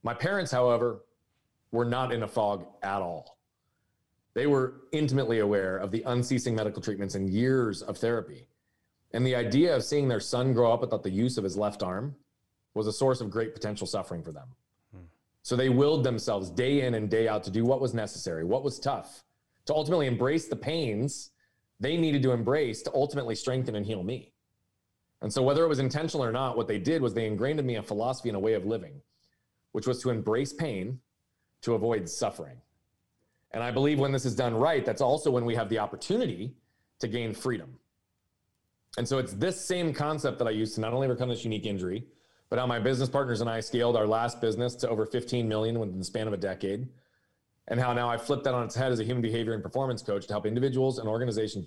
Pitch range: 110-130 Hz